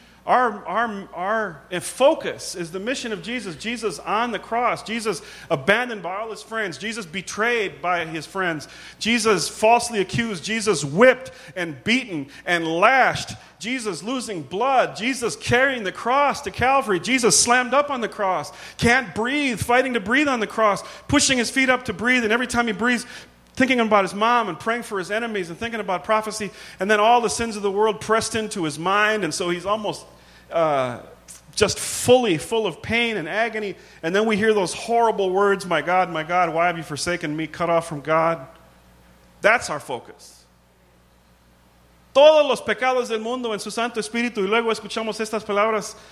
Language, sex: English, male